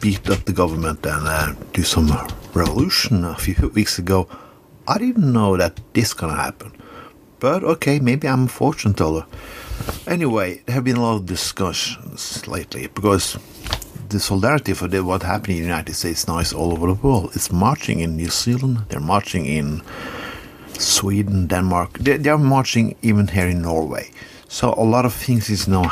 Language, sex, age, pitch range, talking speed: English, male, 50-69, 85-115 Hz, 170 wpm